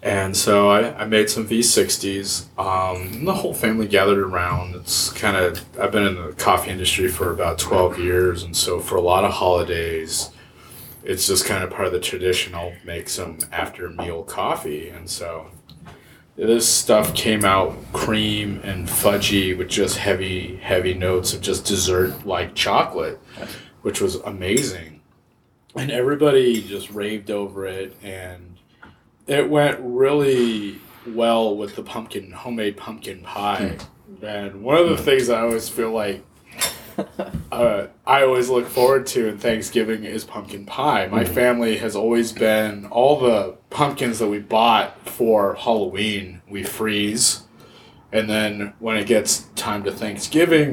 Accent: American